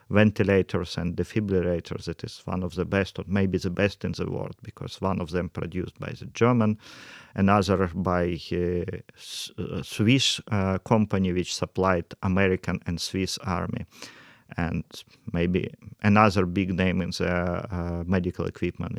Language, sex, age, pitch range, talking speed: English, male, 40-59, 95-115 Hz, 145 wpm